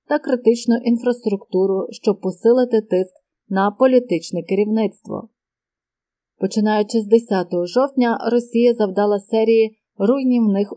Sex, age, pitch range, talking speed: female, 30-49, 195-245 Hz, 95 wpm